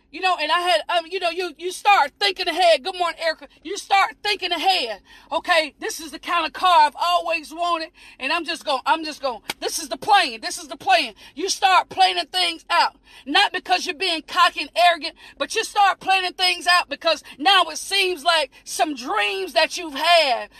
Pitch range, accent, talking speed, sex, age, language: 325-390 Hz, American, 215 wpm, female, 40-59, English